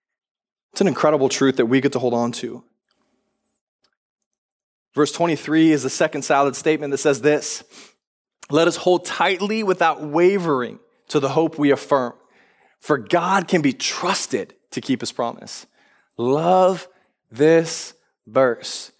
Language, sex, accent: English, male, American